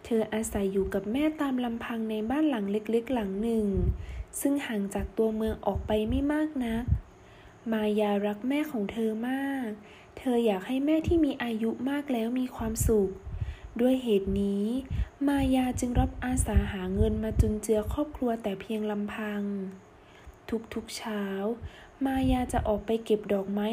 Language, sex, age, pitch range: Thai, female, 20-39, 205-255 Hz